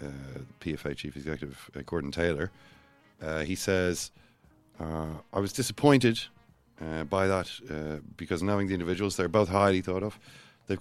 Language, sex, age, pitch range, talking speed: English, male, 40-59, 85-110 Hz, 155 wpm